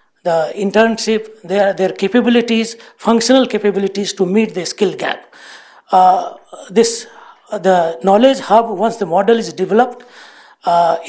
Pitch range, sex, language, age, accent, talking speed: 190-245 Hz, male, English, 60-79, Indian, 125 wpm